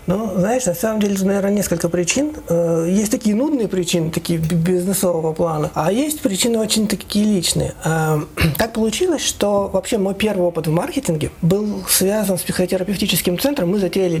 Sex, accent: male, native